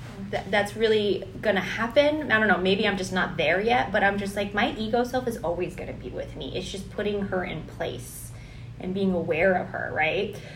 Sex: female